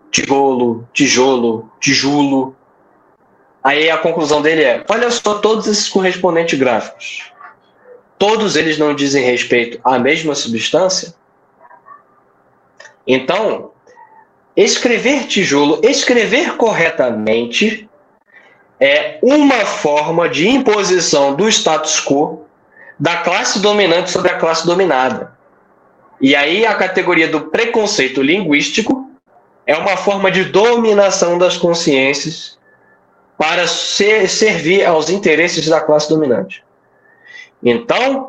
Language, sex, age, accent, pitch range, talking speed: Portuguese, male, 20-39, Brazilian, 150-220 Hz, 100 wpm